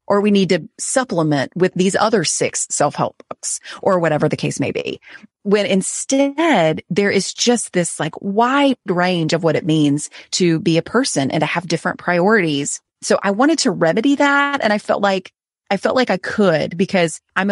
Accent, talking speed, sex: American, 190 wpm, female